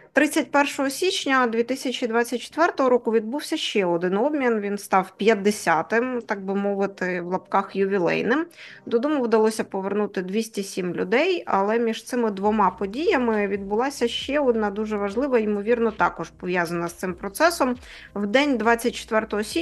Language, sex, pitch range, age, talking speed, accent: Ukrainian, female, 200-240 Hz, 20-39, 130 wpm, native